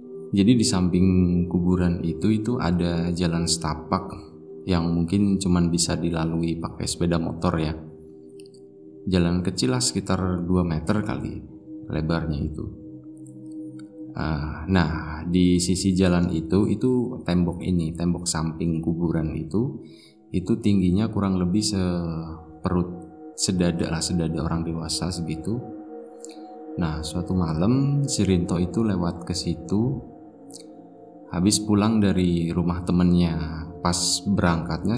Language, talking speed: Indonesian, 115 wpm